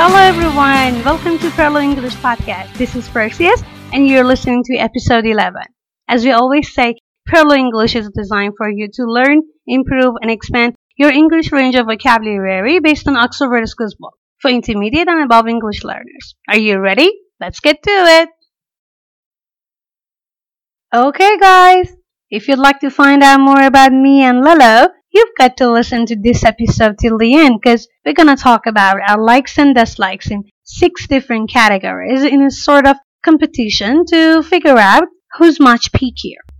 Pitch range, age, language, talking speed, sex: 235-310 Hz, 30-49, Persian, 165 wpm, female